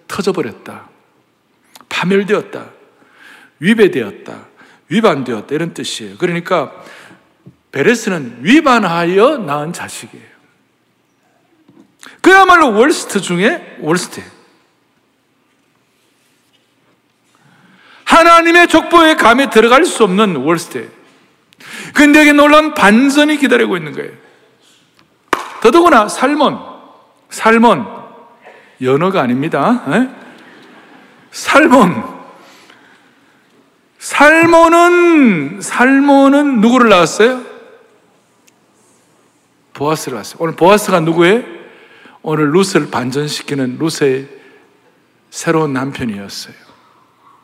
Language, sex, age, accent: Korean, male, 60-79, native